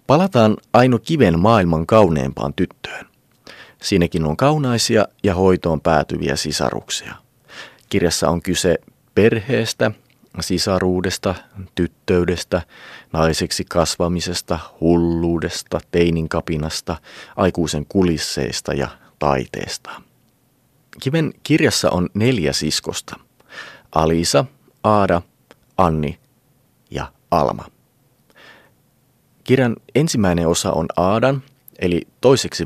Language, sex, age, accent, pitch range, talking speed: Finnish, male, 30-49, native, 80-115 Hz, 80 wpm